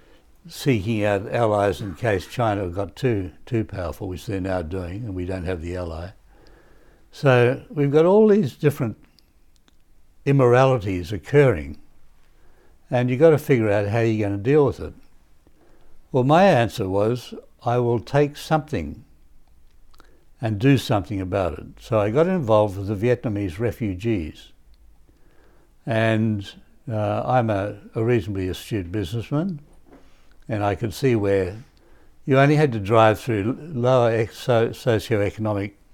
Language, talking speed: English, 140 wpm